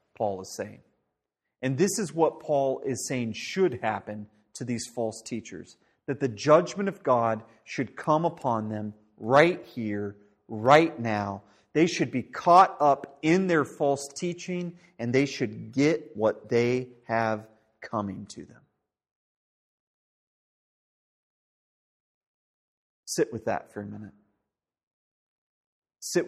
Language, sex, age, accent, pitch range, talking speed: English, male, 40-59, American, 115-160 Hz, 125 wpm